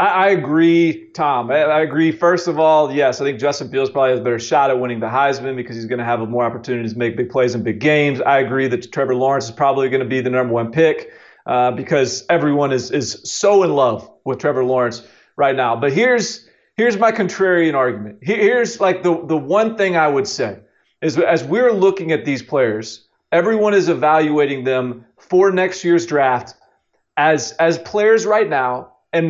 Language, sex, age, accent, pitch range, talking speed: English, male, 40-59, American, 135-190 Hz, 200 wpm